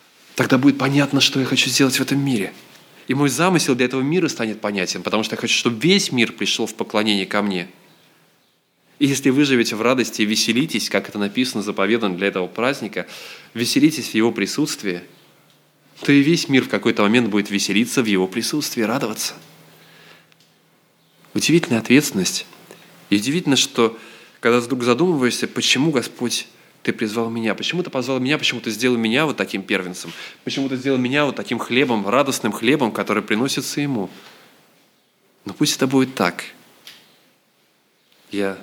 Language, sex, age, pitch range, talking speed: Russian, male, 20-39, 105-135 Hz, 160 wpm